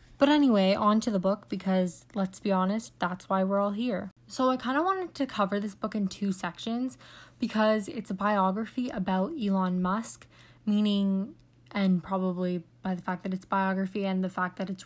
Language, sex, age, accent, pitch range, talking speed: English, female, 20-39, American, 190-220 Hz, 200 wpm